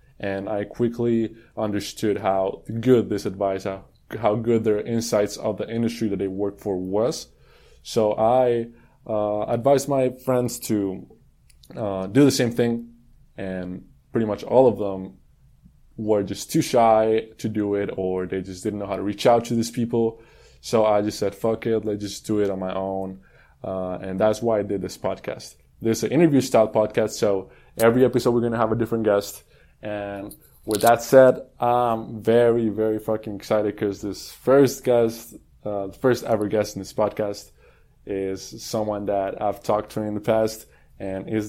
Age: 20-39